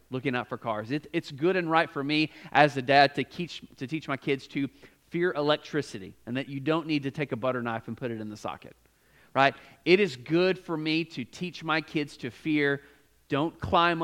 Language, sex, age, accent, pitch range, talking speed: English, male, 40-59, American, 125-155 Hz, 220 wpm